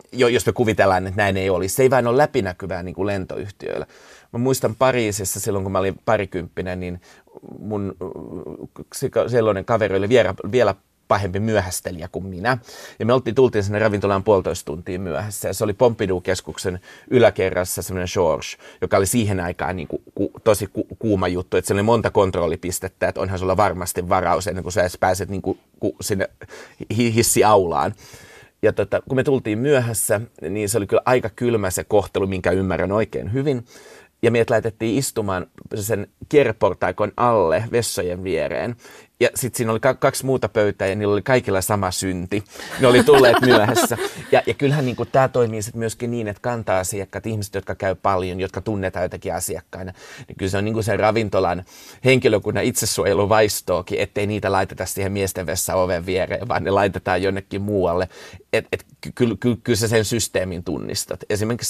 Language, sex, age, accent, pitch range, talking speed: Finnish, male, 30-49, native, 95-115 Hz, 170 wpm